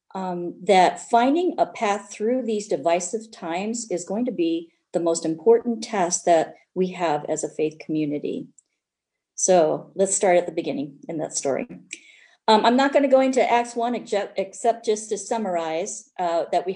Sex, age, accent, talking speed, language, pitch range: female, 50-69, American, 175 wpm, English, 170-235 Hz